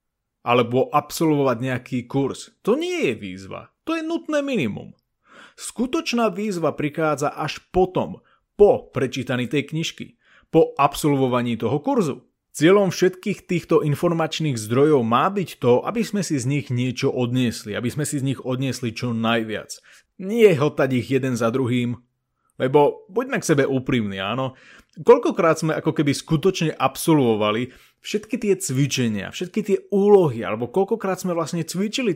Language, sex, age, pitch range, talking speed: Slovak, male, 30-49, 125-175 Hz, 145 wpm